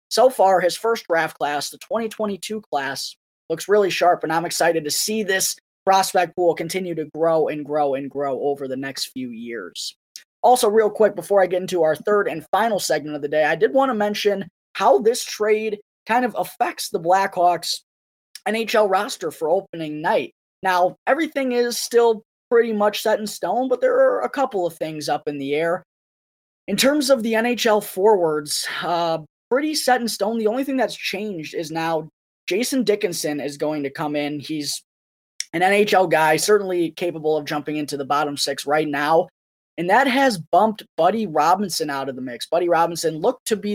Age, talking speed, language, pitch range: 20-39, 190 wpm, English, 155-210 Hz